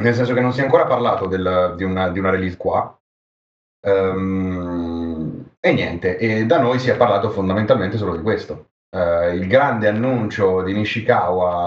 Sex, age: male, 30-49